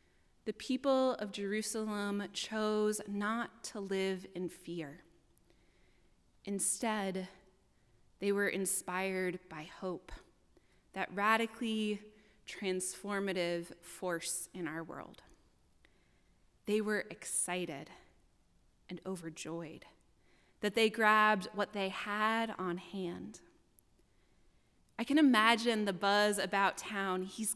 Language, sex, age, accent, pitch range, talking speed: English, female, 20-39, American, 185-220 Hz, 95 wpm